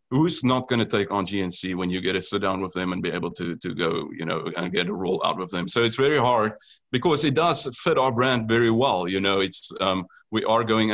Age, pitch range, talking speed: 30-49, 100-125 Hz, 270 wpm